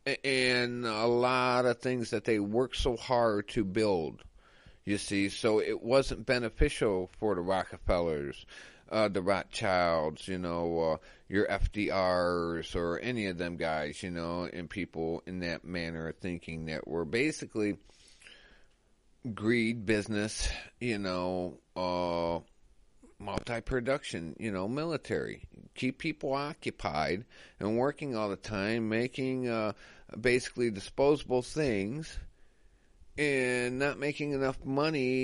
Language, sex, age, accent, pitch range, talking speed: English, male, 40-59, American, 95-125 Hz, 125 wpm